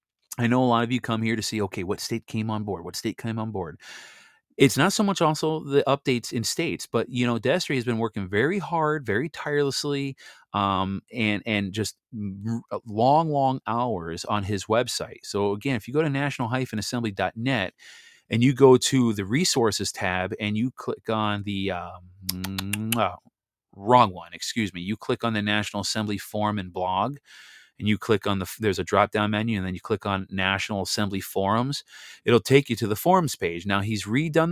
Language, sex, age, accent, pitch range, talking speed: English, male, 30-49, American, 100-125 Hz, 200 wpm